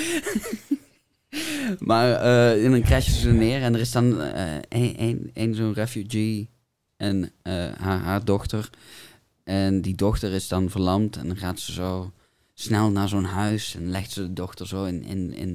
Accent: Dutch